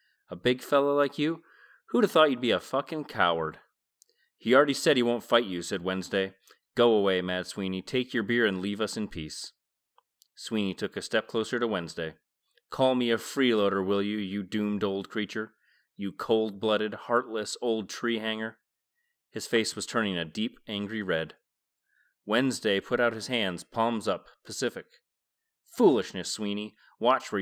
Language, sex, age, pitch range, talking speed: English, male, 30-49, 100-130 Hz, 170 wpm